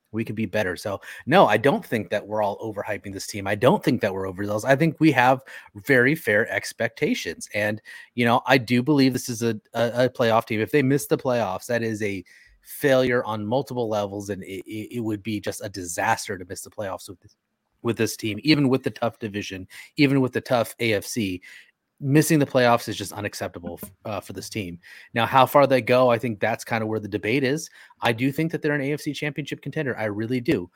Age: 30-49